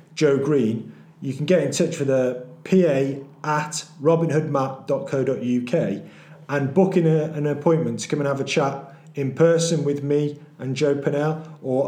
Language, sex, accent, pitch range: English, male, British, 125-160 Hz